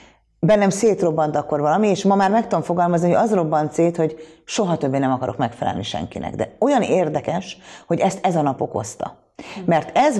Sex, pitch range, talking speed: female, 145-190 Hz, 190 wpm